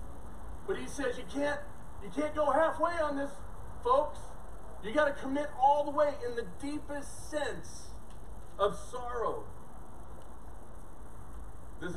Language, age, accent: English, 40-59, American